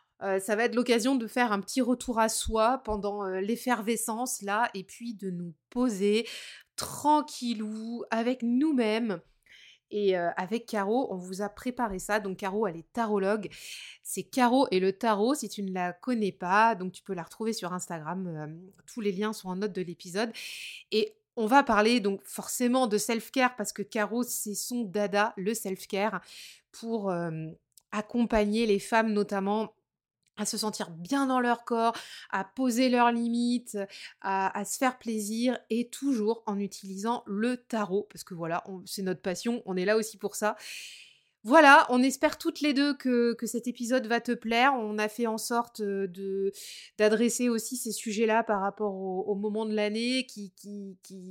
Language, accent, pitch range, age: French, French, 200-240 Hz, 20-39